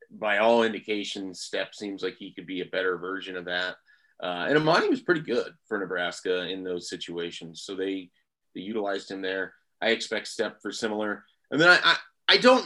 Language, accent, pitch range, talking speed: English, American, 95-115 Hz, 200 wpm